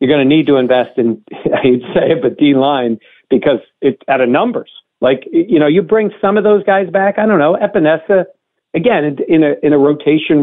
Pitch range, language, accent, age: 125-150 Hz, English, American, 50-69